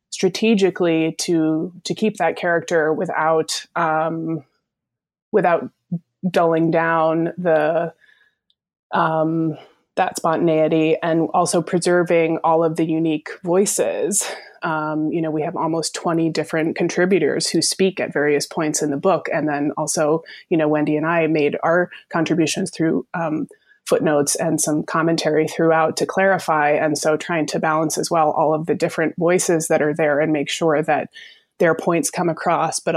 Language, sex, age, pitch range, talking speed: English, female, 20-39, 155-175 Hz, 155 wpm